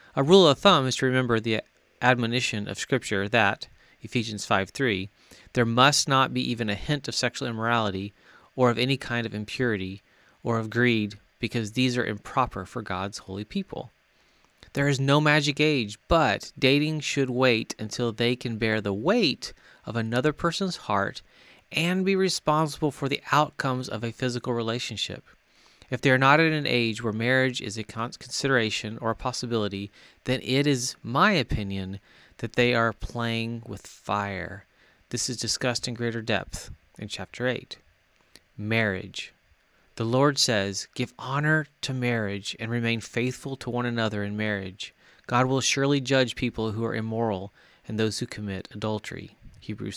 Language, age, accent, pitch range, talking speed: English, 30-49, American, 105-130 Hz, 160 wpm